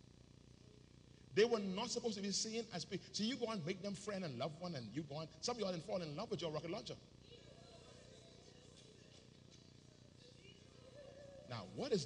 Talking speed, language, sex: 185 wpm, English, male